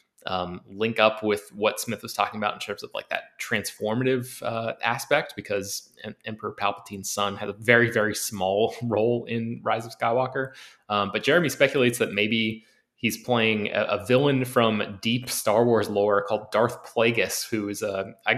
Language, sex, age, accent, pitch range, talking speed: English, male, 20-39, American, 105-120 Hz, 175 wpm